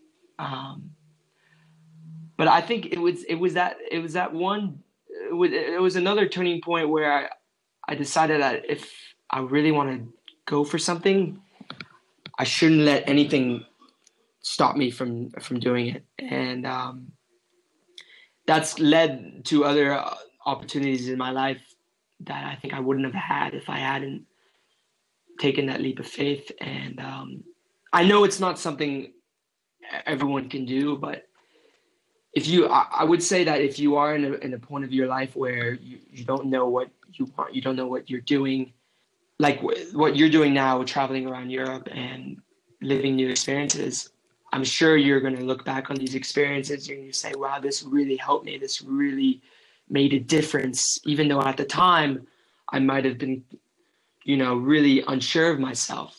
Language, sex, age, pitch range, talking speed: English, male, 20-39, 135-180 Hz, 175 wpm